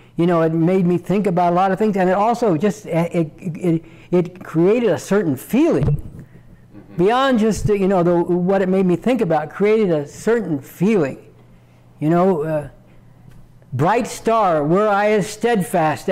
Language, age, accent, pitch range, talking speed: English, 60-79, American, 175-235 Hz, 175 wpm